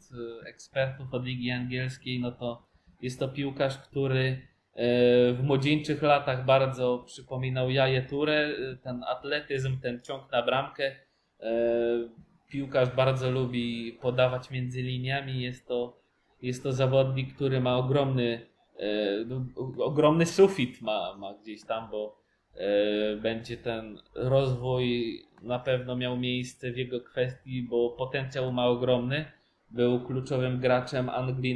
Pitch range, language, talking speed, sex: 125-135 Hz, Polish, 115 wpm, male